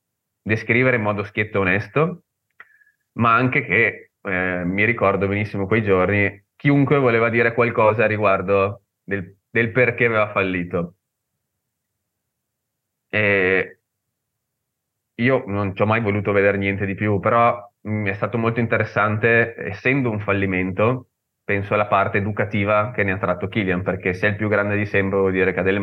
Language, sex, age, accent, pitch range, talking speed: Italian, male, 20-39, native, 95-115 Hz, 155 wpm